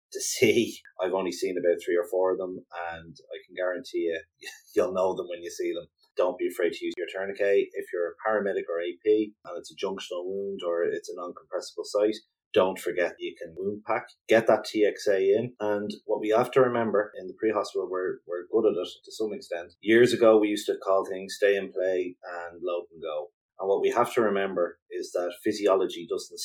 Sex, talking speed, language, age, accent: male, 220 wpm, English, 30-49, Irish